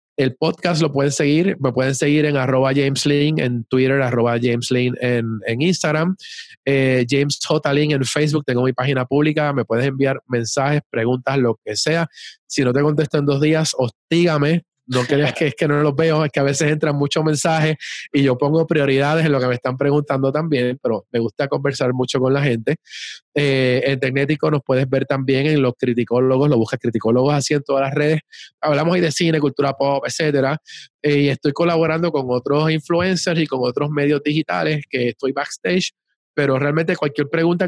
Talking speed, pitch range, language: 190 wpm, 130-155 Hz, Spanish